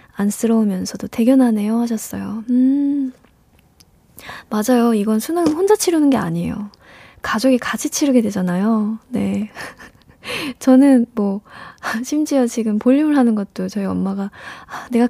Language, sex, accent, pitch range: Korean, female, native, 205-260 Hz